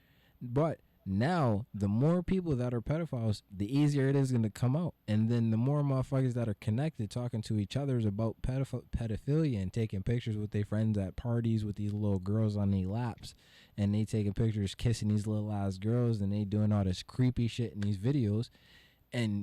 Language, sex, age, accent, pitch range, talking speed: English, male, 20-39, American, 105-130 Hz, 205 wpm